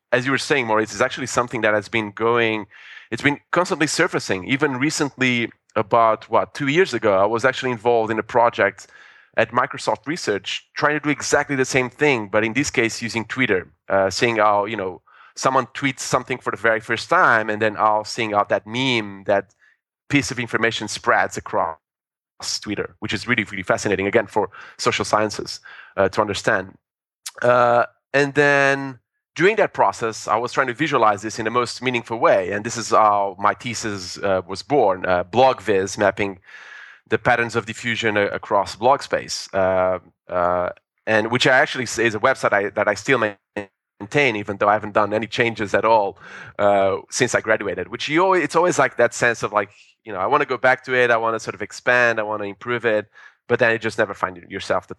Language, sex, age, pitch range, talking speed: English, male, 20-39, 105-125 Hz, 205 wpm